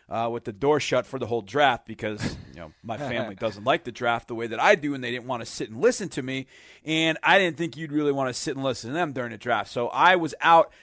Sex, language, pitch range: male, English, 130-175 Hz